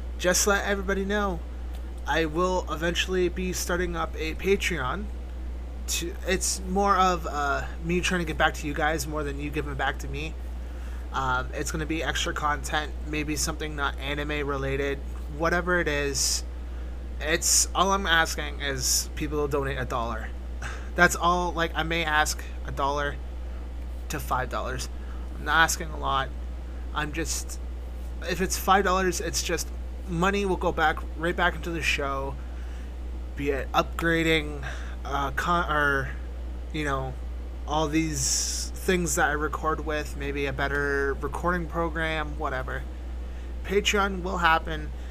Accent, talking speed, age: American, 150 wpm, 30-49